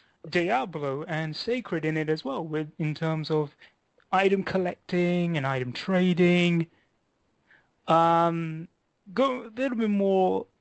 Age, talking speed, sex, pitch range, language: 30-49, 125 wpm, male, 150-185 Hz, English